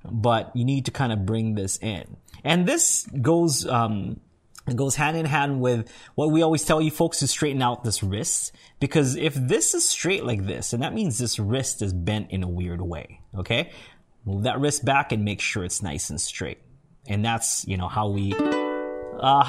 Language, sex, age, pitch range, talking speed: English, male, 20-39, 100-145 Hz, 205 wpm